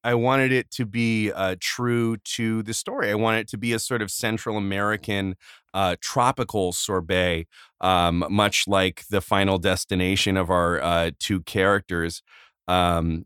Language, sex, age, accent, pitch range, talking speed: English, male, 30-49, American, 95-120 Hz, 160 wpm